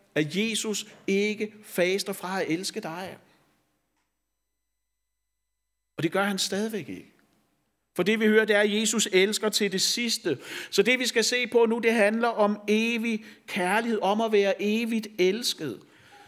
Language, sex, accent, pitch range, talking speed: Danish, male, native, 200-230 Hz, 160 wpm